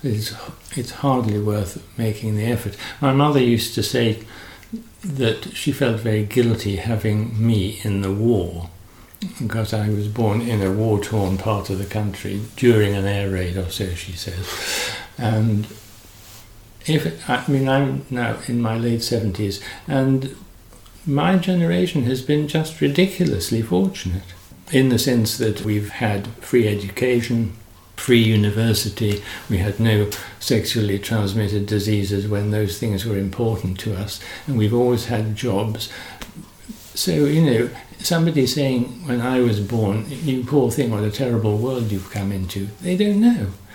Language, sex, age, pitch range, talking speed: English, male, 60-79, 100-125 Hz, 150 wpm